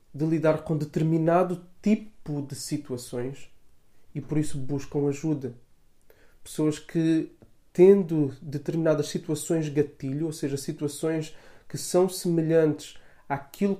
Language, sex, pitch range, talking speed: Portuguese, male, 145-165 Hz, 110 wpm